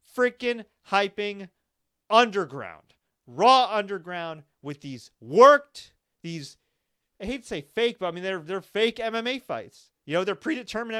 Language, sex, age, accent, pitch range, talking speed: English, male, 30-49, American, 195-250 Hz, 140 wpm